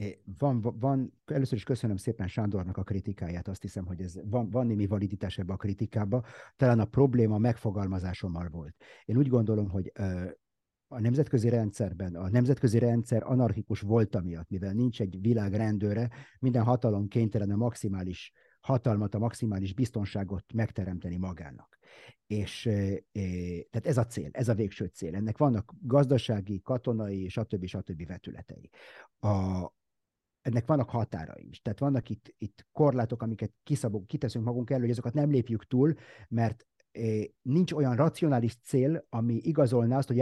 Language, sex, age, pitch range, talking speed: Hungarian, male, 50-69, 100-125 Hz, 145 wpm